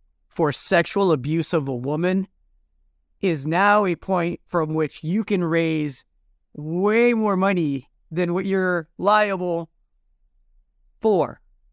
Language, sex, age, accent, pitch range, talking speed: English, male, 30-49, American, 155-205 Hz, 120 wpm